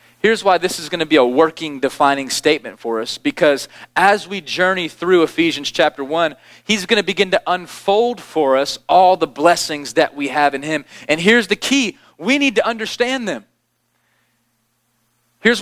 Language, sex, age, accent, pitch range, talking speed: English, male, 30-49, American, 150-220 Hz, 180 wpm